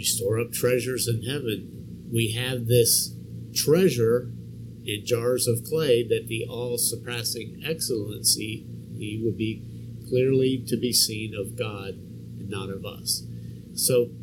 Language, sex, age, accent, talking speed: English, male, 50-69, American, 125 wpm